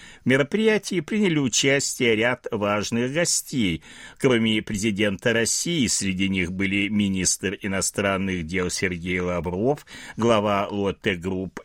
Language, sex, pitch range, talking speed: Russian, male, 100-140 Hz, 100 wpm